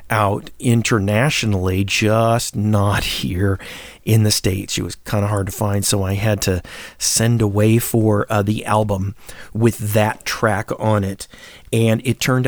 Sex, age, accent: male, 40-59, American